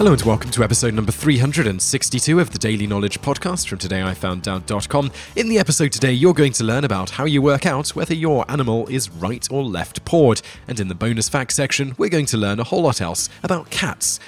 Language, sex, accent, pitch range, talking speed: English, male, British, 105-135 Hz, 215 wpm